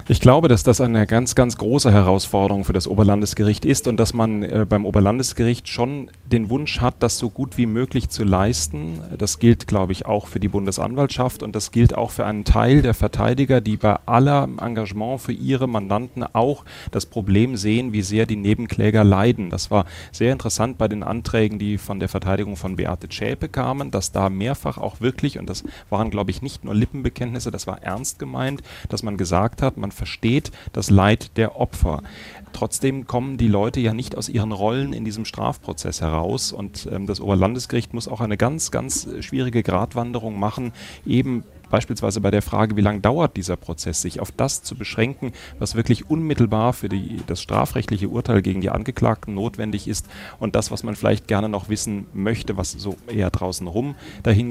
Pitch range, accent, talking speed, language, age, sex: 95-120 Hz, German, 190 wpm, German, 30-49, male